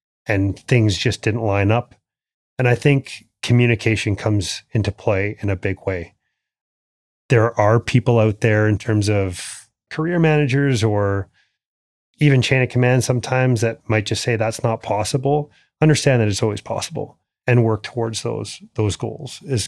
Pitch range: 100-120 Hz